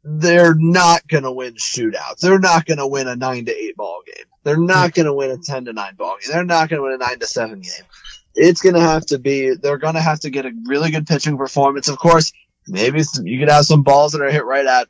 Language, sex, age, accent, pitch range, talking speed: English, male, 20-39, American, 120-150 Hz, 280 wpm